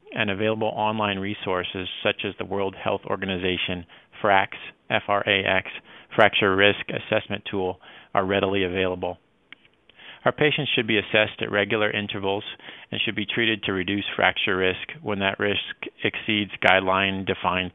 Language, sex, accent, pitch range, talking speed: English, male, American, 95-110 Hz, 135 wpm